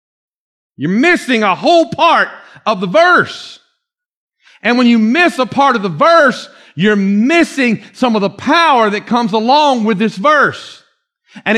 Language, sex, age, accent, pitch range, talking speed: English, male, 50-69, American, 210-290 Hz, 155 wpm